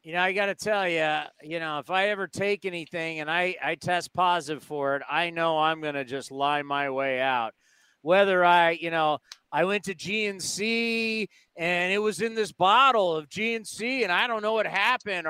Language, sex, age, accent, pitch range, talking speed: English, male, 40-59, American, 165-215 Hz, 210 wpm